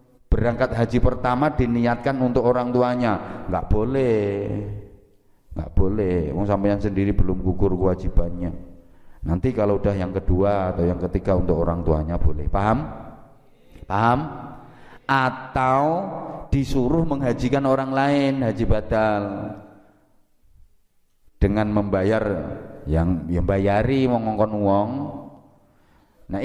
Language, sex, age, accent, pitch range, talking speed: Indonesian, male, 30-49, native, 90-130 Hz, 100 wpm